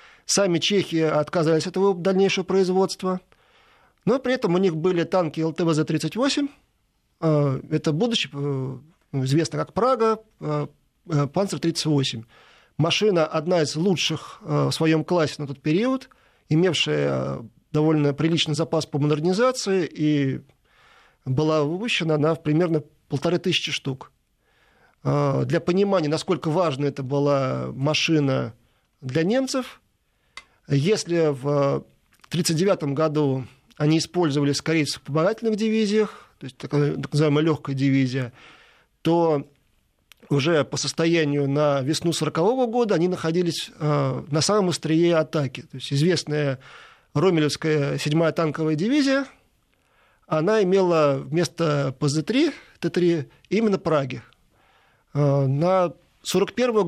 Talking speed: 105 wpm